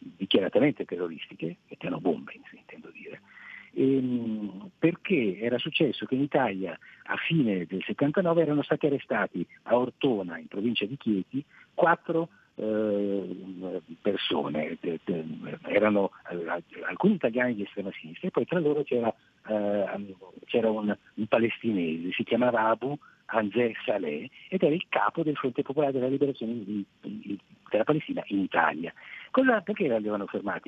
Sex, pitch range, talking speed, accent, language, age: male, 105-165 Hz, 130 wpm, native, Italian, 50-69